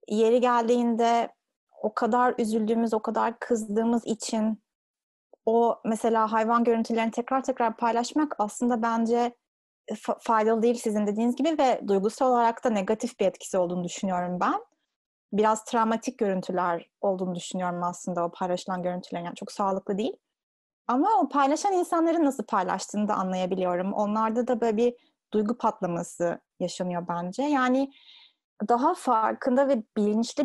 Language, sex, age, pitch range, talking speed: Turkish, female, 30-49, 210-245 Hz, 130 wpm